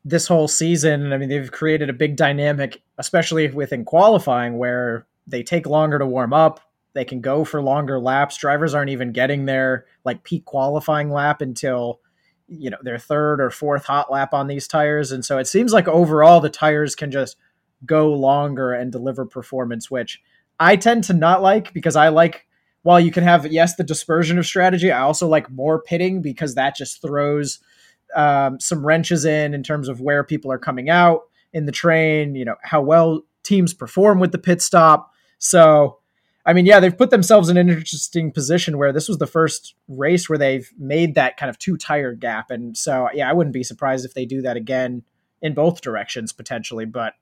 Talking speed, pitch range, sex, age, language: 200 wpm, 135-170 Hz, male, 20-39, English